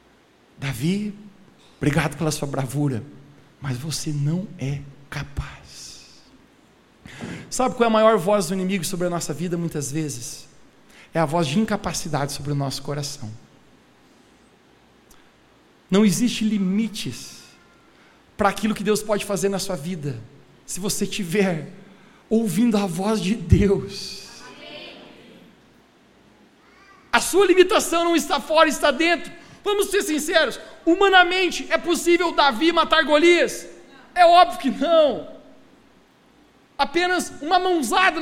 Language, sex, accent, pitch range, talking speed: Portuguese, male, Brazilian, 160-260 Hz, 120 wpm